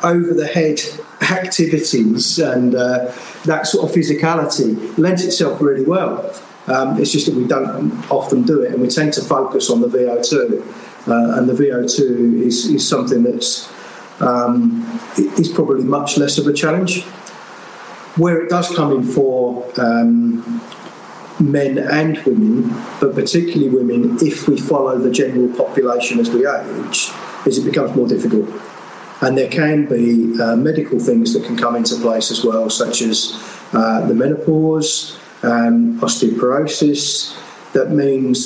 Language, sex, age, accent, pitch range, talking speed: English, male, 40-59, British, 120-160 Hz, 150 wpm